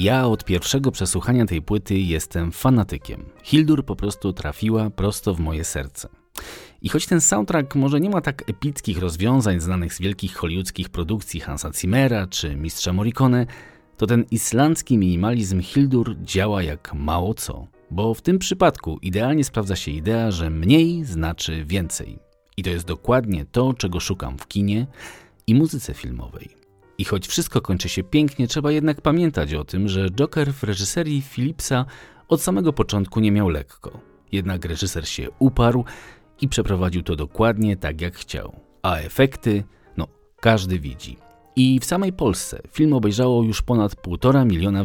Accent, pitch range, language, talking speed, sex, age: native, 90-130 Hz, Polish, 155 wpm, male, 30-49